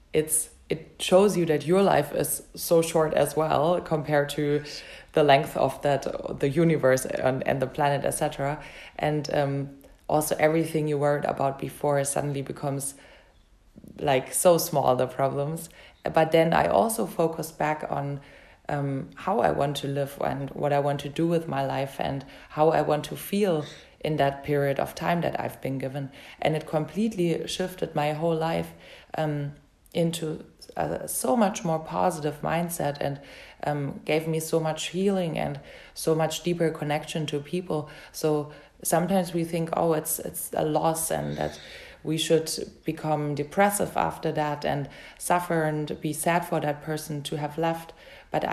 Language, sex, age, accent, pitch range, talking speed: English, female, 20-39, German, 145-165 Hz, 165 wpm